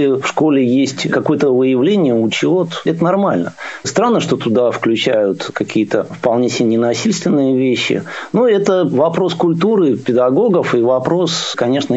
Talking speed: 125 wpm